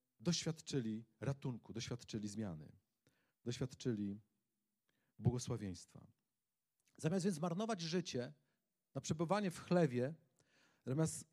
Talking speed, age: 80 wpm, 40-59